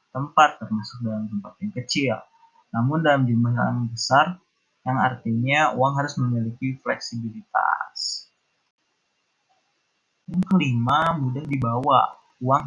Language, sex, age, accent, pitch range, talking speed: Indonesian, male, 20-39, native, 120-150 Hz, 105 wpm